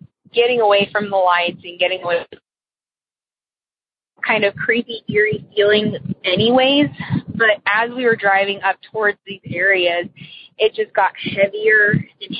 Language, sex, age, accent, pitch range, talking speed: English, female, 20-39, American, 180-220 Hz, 140 wpm